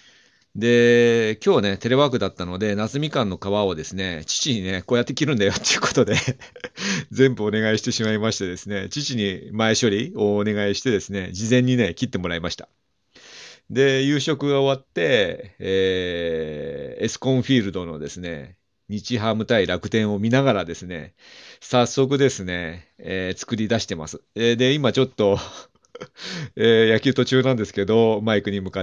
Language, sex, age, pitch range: Japanese, male, 40-59, 90-125 Hz